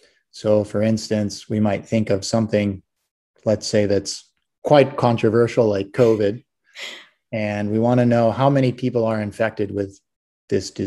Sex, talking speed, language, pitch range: male, 145 wpm, English, 105-120 Hz